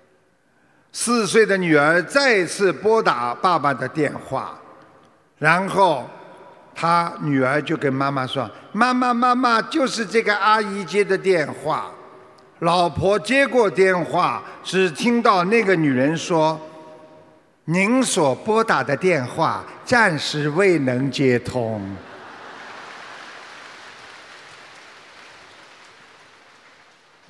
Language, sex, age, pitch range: Chinese, male, 50-69, 155-225 Hz